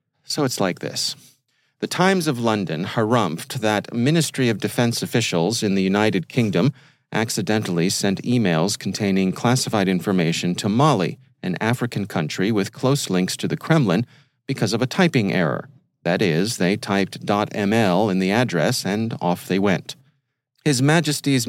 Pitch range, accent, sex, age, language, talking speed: 105-140 Hz, American, male, 40-59, English, 150 wpm